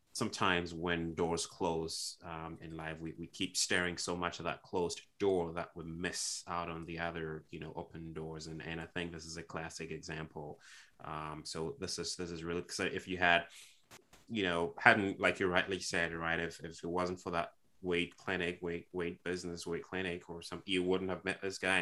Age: 20-39